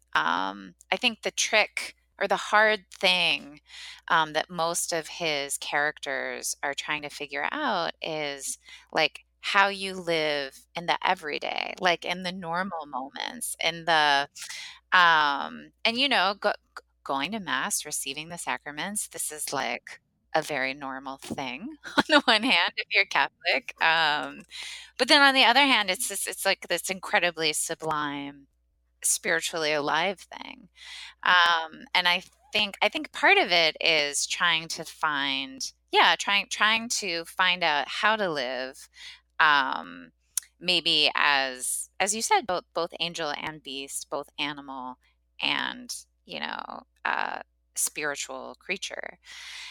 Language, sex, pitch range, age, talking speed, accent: English, female, 140-200 Hz, 30-49, 140 wpm, American